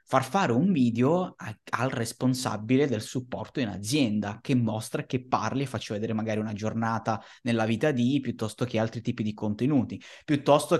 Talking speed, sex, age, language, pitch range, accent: 165 wpm, male, 20-39, Italian, 115-170 Hz, native